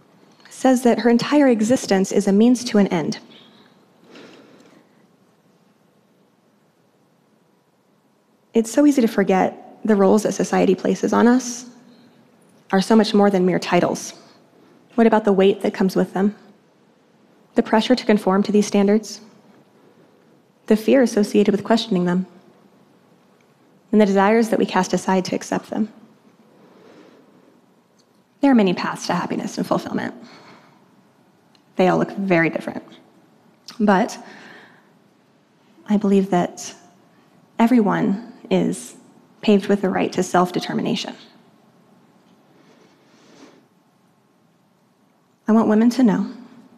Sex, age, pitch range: female, 20-39, 195-225 Hz